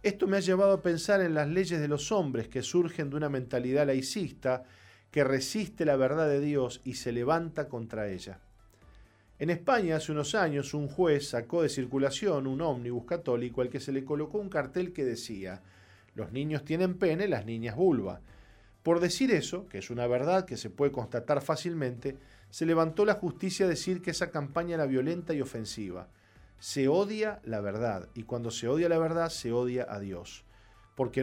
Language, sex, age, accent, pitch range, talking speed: Spanish, male, 40-59, Argentinian, 110-155 Hz, 190 wpm